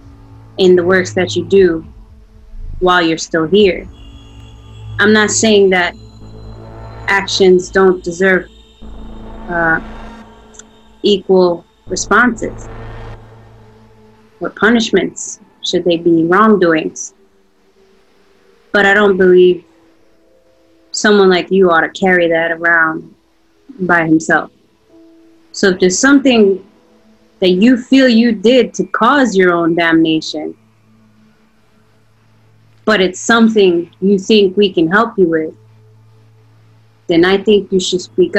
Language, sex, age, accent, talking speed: English, female, 20-39, American, 110 wpm